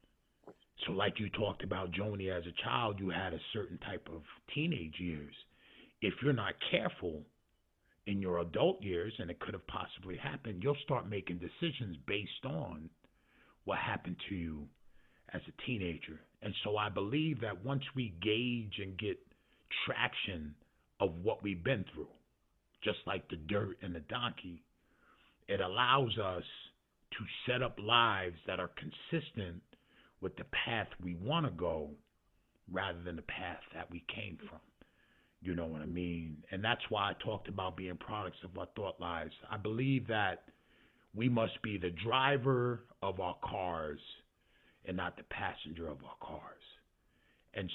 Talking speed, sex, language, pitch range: 160 wpm, male, English, 85-115 Hz